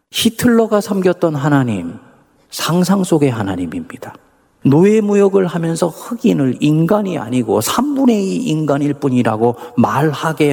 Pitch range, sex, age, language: 130-185 Hz, male, 40-59, Korean